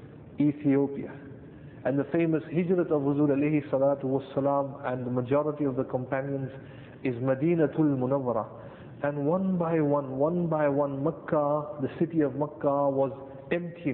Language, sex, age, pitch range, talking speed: English, male, 50-69, 135-150 Hz, 140 wpm